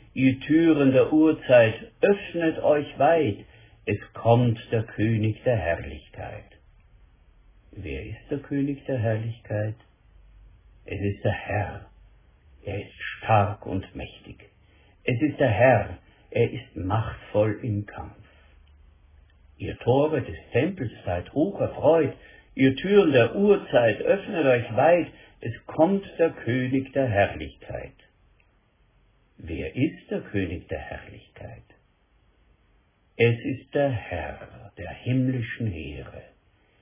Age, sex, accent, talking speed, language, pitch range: 60-79, male, German, 115 wpm, German, 100-140 Hz